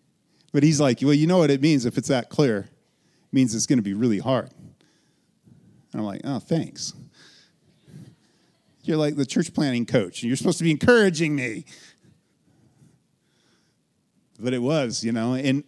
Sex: male